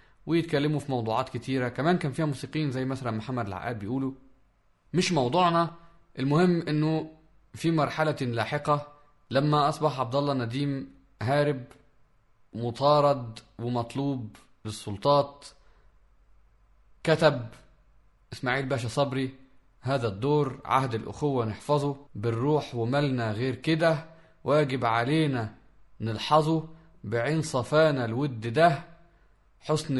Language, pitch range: Arabic, 120-150 Hz